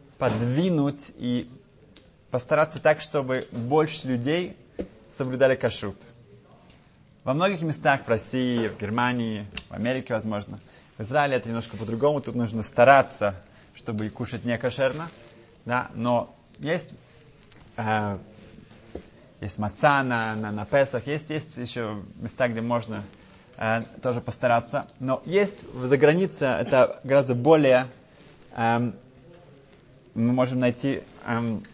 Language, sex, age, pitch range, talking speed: Russian, male, 20-39, 115-145 Hz, 115 wpm